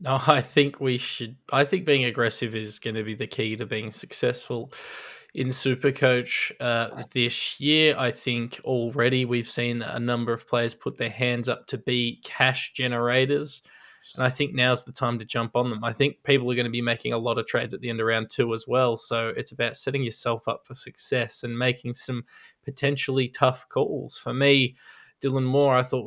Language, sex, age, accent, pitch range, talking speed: English, male, 20-39, Australian, 120-135 Hz, 205 wpm